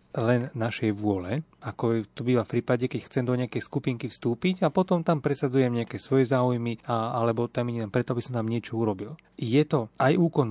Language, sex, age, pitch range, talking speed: Slovak, male, 30-49, 115-135 Hz, 200 wpm